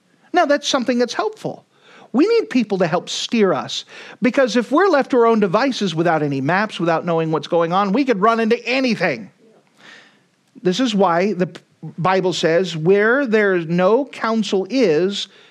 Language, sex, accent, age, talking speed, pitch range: English, male, American, 40-59, 170 wpm, 185-245 Hz